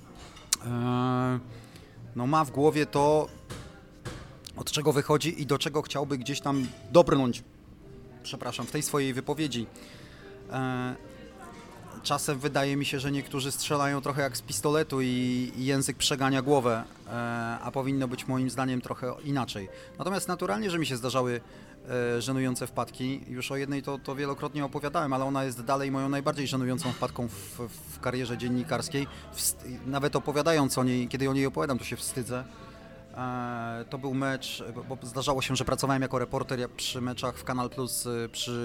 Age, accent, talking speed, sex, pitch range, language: 30-49, native, 150 wpm, male, 120-140 Hz, Polish